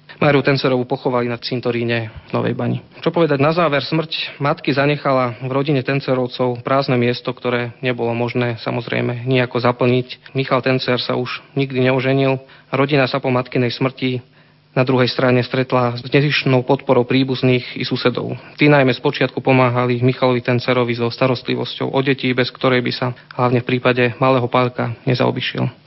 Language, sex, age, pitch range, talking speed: Slovak, male, 30-49, 125-135 Hz, 160 wpm